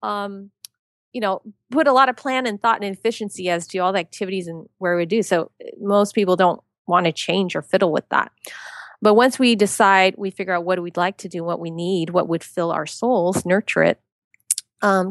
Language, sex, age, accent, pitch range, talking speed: English, female, 30-49, American, 180-235 Hz, 220 wpm